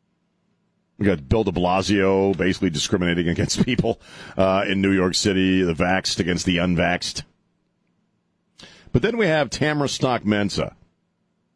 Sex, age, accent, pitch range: male, 40-59, American, 90-115 Hz